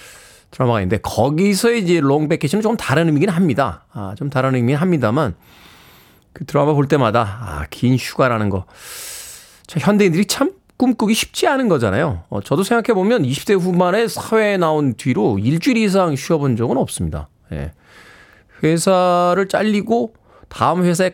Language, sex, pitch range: Korean, male, 130-200 Hz